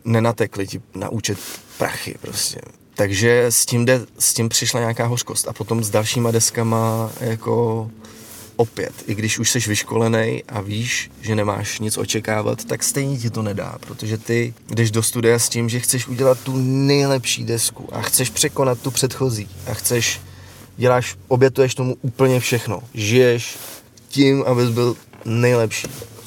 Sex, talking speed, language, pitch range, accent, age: male, 155 wpm, Czech, 105-120 Hz, native, 20-39